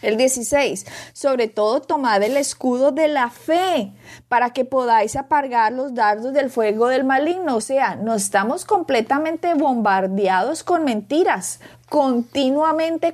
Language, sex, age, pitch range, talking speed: Spanish, female, 30-49, 225-300 Hz, 135 wpm